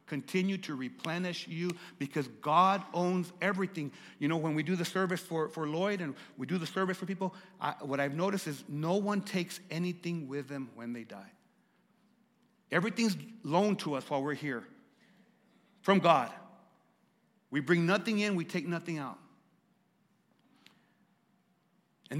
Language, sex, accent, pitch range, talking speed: English, male, American, 160-200 Hz, 155 wpm